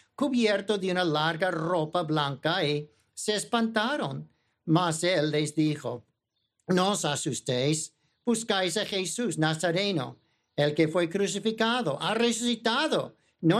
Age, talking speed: 50-69, 120 wpm